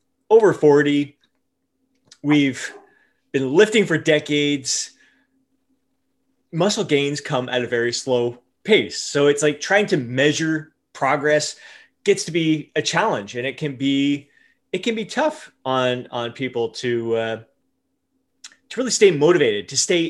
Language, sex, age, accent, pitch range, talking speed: English, male, 20-39, American, 125-170 Hz, 135 wpm